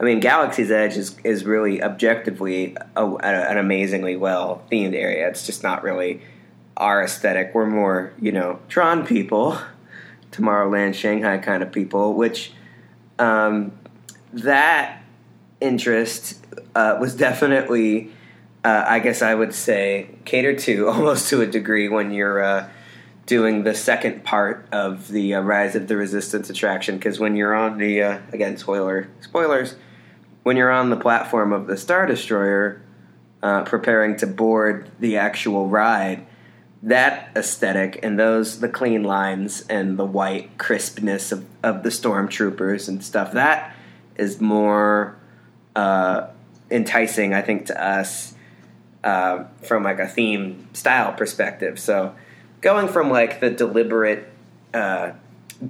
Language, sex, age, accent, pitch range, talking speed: English, male, 20-39, American, 95-110 Hz, 140 wpm